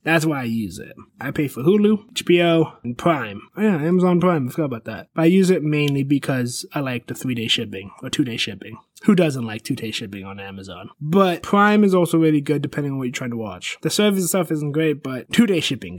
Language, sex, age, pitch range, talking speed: English, male, 20-39, 130-185 Hz, 230 wpm